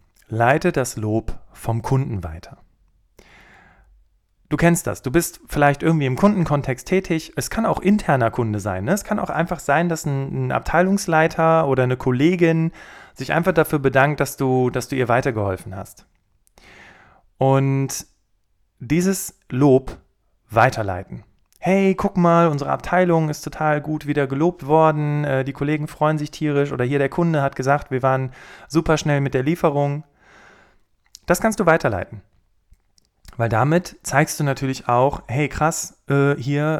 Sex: male